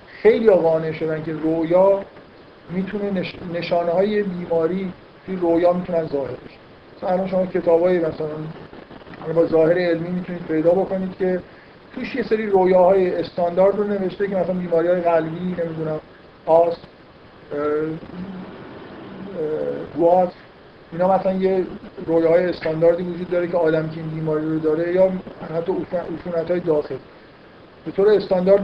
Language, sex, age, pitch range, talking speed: Persian, male, 50-69, 160-190 Hz, 130 wpm